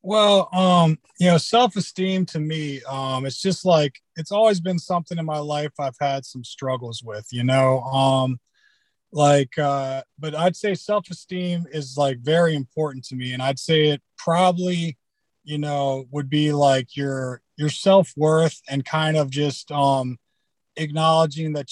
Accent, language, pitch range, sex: American, English, 135-160 Hz, male